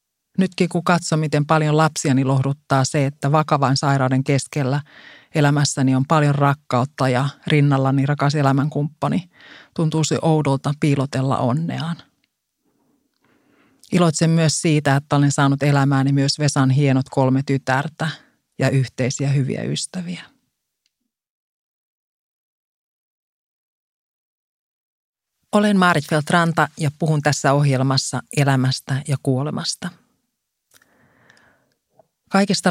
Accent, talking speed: native, 95 wpm